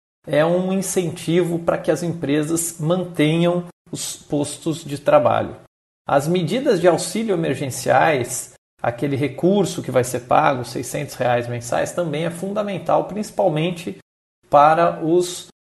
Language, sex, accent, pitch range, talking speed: Portuguese, male, Brazilian, 140-175 Hz, 120 wpm